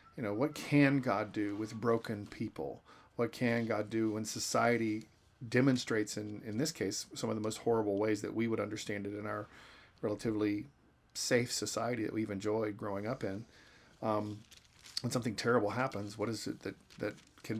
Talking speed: 180 wpm